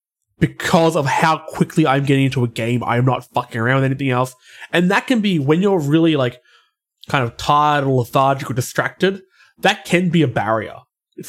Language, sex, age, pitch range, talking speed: English, male, 20-39, 120-170 Hz, 200 wpm